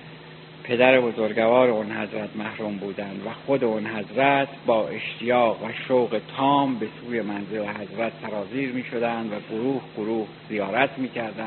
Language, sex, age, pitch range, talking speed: Persian, male, 60-79, 105-135 Hz, 140 wpm